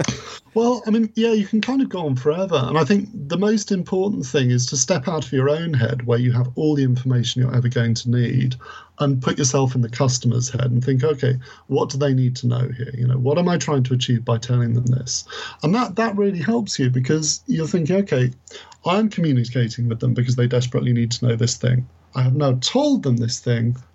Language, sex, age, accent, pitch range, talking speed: English, male, 40-59, British, 120-145 Hz, 240 wpm